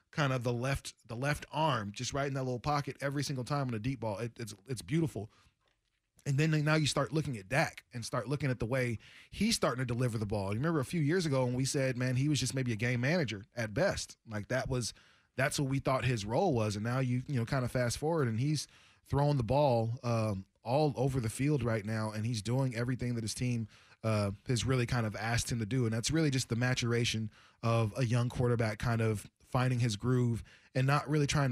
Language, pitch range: English, 115-140 Hz